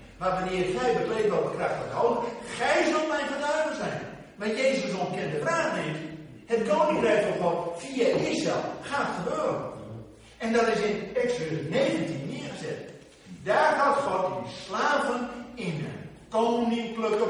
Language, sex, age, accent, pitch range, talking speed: Dutch, male, 60-79, Dutch, 185-275 Hz, 150 wpm